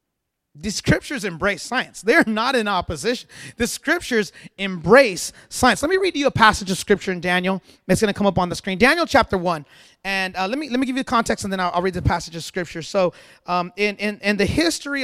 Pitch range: 160-205 Hz